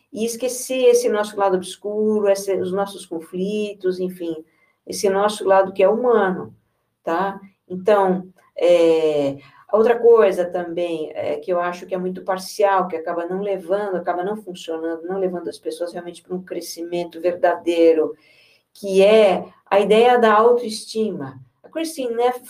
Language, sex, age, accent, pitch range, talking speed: Portuguese, female, 50-69, Brazilian, 175-220 Hz, 140 wpm